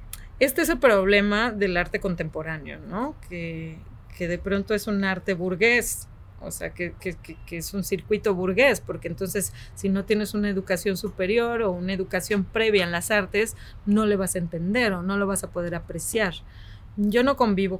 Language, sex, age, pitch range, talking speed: English, female, 30-49, 175-210 Hz, 185 wpm